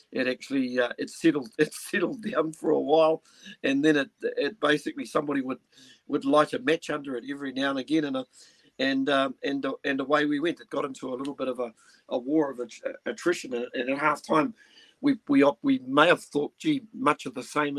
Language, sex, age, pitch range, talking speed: English, male, 50-69, 135-225 Hz, 215 wpm